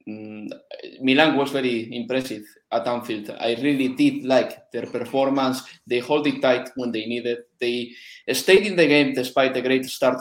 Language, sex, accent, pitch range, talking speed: English, male, Spanish, 130-190 Hz, 165 wpm